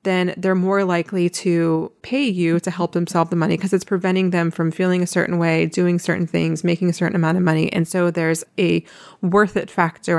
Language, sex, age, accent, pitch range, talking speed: English, female, 20-39, American, 170-195 Hz, 225 wpm